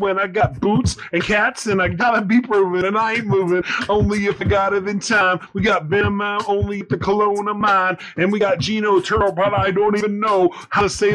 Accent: American